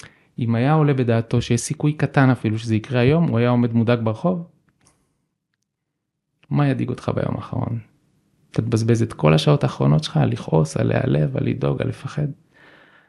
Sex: male